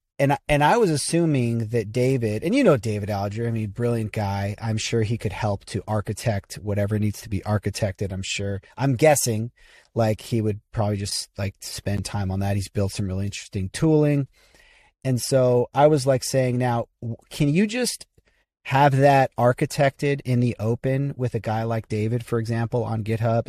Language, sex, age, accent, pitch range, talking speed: English, male, 30-49, American, 105-130 Hz, 185 wpm